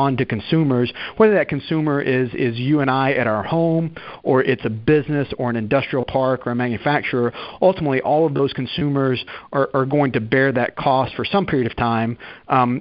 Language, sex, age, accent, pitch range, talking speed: English, male, 40-59, American, 120-135 Hz, 200 wpm